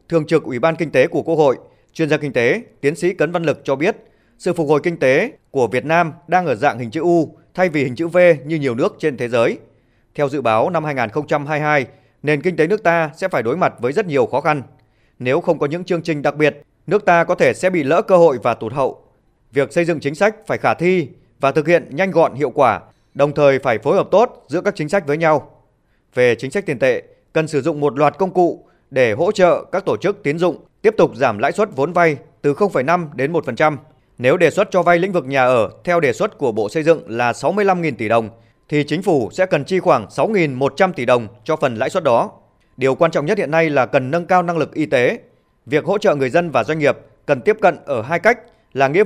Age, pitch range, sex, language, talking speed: 20-39, 140-180 Hz, male, Vietnamese, 255 wpm